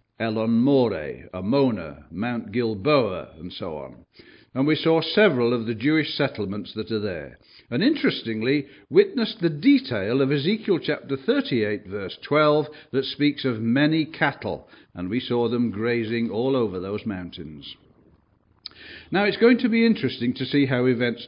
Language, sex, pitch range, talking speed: English, male, 110-150 Hz, 155 wpm